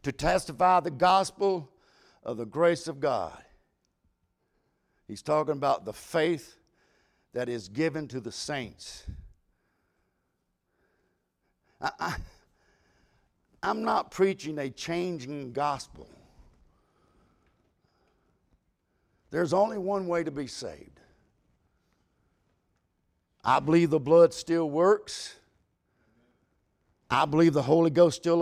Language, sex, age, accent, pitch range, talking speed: English, male, 60-79, American, 120-175 Hz, 95 wpm